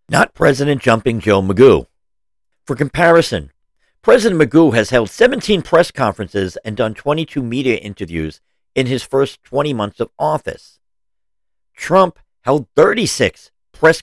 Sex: male